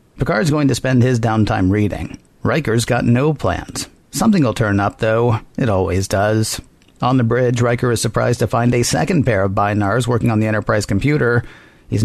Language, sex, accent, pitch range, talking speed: English, male, American, 105-125 Hz, 185 wpm